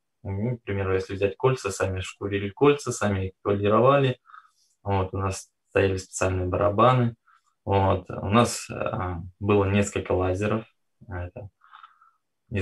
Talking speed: 125 wpm